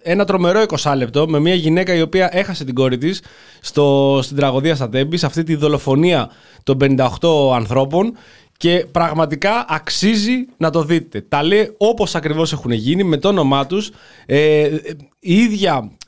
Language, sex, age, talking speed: Greek, male, 20-39, 150 wpm